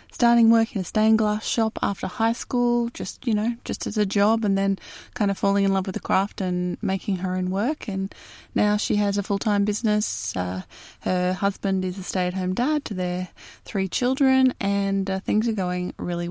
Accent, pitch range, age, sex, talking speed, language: Australian, 180-215 Hz, 20-39, female, 205 wpm, English